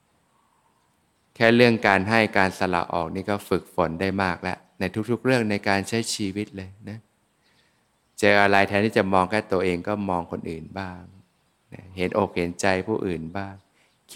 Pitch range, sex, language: 90-105 Hz, male, Thai